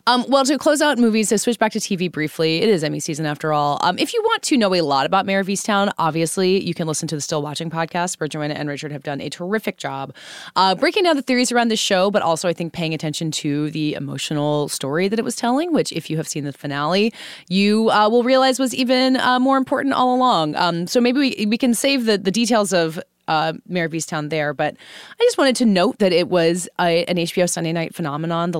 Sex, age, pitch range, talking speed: female, 20-39, 155-220 Hz, 250 wpm